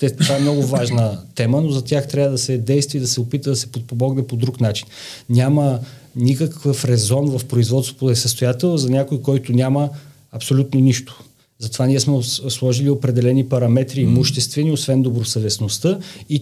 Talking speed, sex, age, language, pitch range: 170 wpm, male, 40-59, Bulgarian, 120-145 Hz